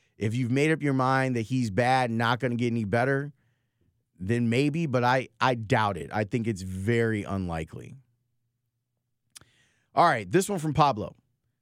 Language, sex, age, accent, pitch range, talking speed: English, male, 30-49, American, 110-130 Hz, 175 wpm